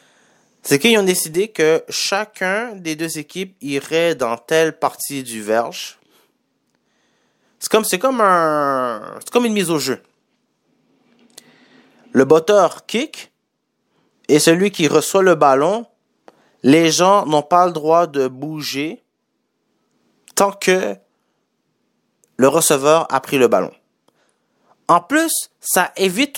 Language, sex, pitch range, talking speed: French, male, 130-190 Hz, 125 wpm